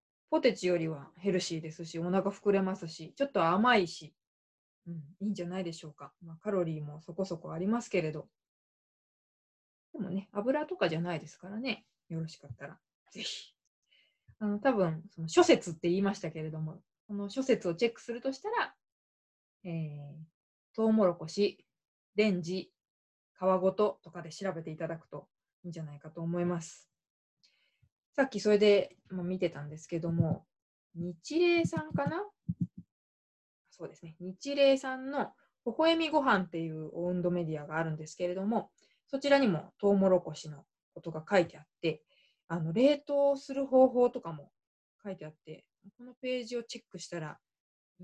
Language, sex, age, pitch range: Japanese, female, 20-39, 165-205 Hz